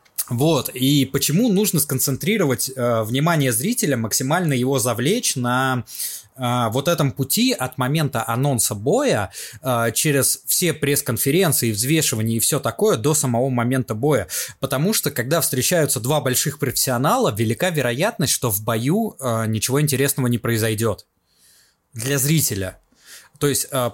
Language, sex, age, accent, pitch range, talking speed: Russian, male, 20-39, native, 120-160 Hz, 135 wpm